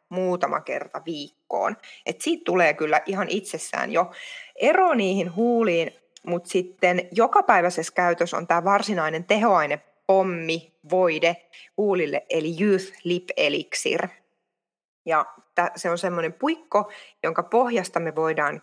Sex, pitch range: female, 165-215 Hz